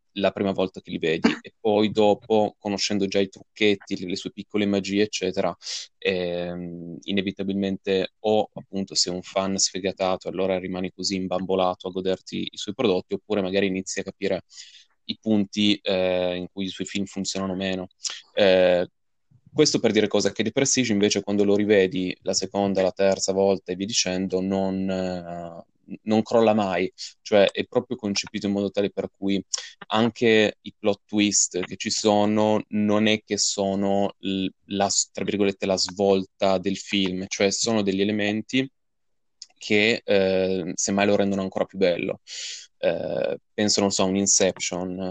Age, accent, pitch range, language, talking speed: 20-39, native, 95-105 Hz, Italian, 165 wpm